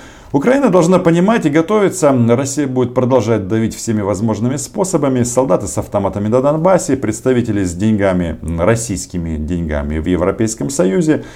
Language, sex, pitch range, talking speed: Russian, male, 85-130 Hz, 130 wpm